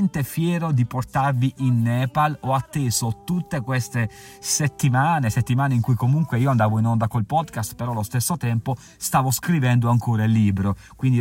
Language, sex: Italian, male